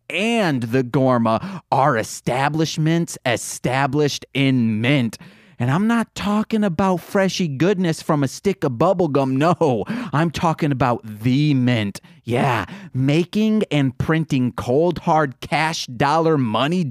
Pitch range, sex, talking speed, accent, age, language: 130-180 Hz, male, 125 wpm, American, 30-49, English